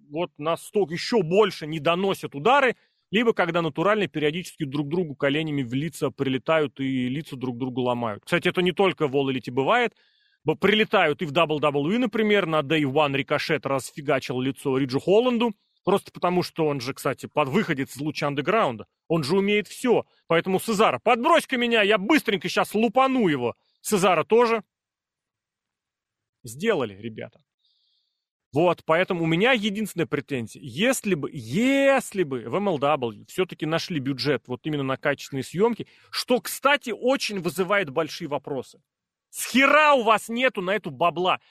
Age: 30-49